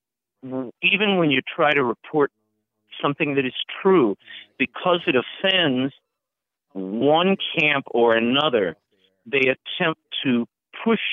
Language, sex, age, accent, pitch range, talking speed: English, male, 50-69, American, 120-165 Hz, 115 wpm